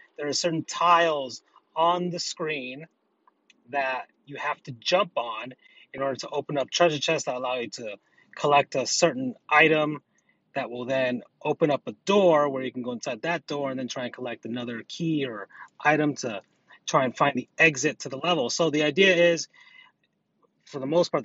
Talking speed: 190 wpm